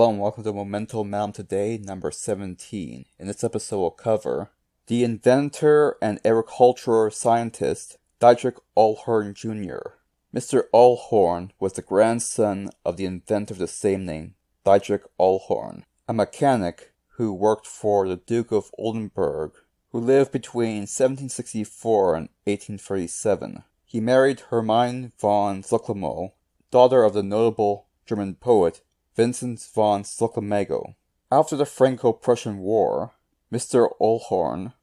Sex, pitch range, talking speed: male, 100-120 Hz, 120 wpm